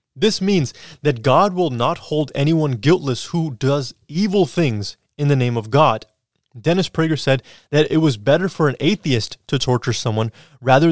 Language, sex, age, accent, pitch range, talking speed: English, male, 20-39, American, 120-150 Hz, 175 wpm